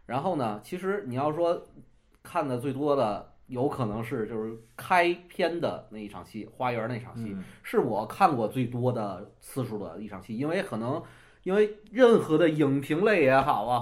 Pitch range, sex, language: 110-155 Hz, male, Chinese